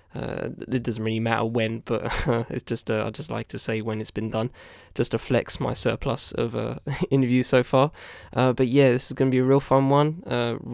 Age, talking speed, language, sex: 10-29, 240 wpm, English, male